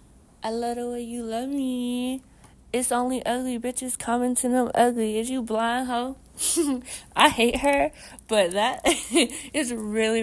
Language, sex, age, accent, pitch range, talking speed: English, female, 20-39, American, 190-240 Hz, 145 wpm